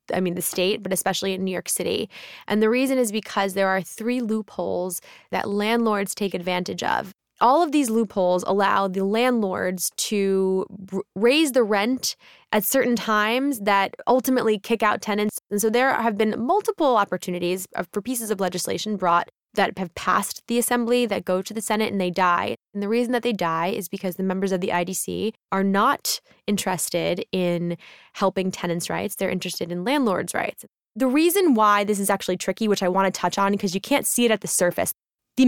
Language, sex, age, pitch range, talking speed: English, female, 10-29, 185-240 Hz, 195 wpm